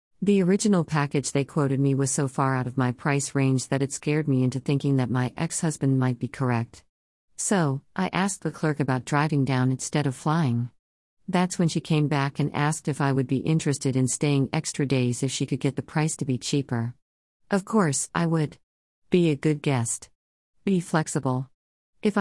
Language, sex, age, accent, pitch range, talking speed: English, female, 40-59, American, 130-155 Hz, 195 wpm